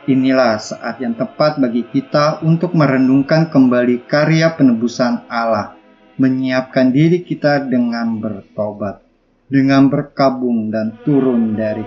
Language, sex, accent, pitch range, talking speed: Indonesian, male, native, 115-160 Hz, 110 wpm